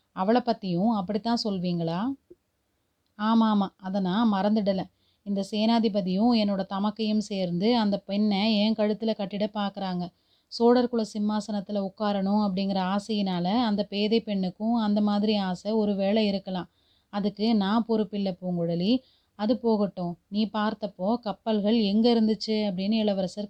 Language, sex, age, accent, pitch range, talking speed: Tamil, female, 30-49, native, 190-220 Hz, 120 wpm